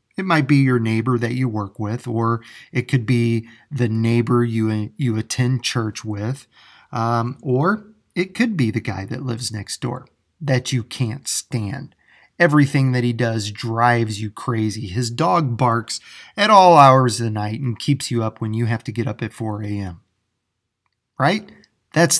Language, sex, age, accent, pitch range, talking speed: English, male, 30-49, American, 110-135 Hz, 180 wpm